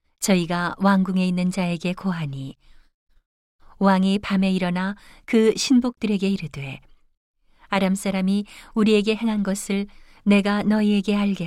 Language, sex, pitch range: Korean, female, 165-210 Hz